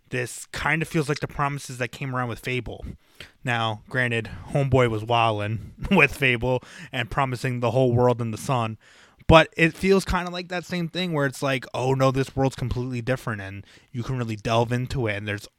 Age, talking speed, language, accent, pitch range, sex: 20-39, 210 wpm, English, American, 110-140 Hz, male